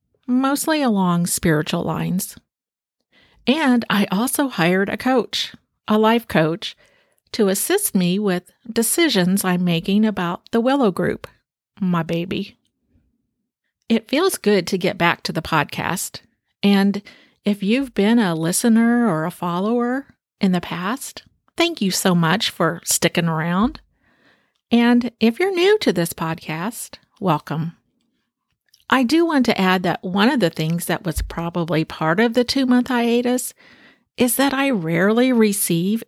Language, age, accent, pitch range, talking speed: English, 50-69, American, 175-245 Hz, 140 wpm